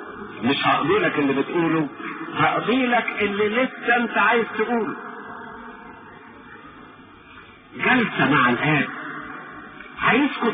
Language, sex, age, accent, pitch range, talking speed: English, male, 50-69, Lebanese, 205-270 Hz, 80 wpm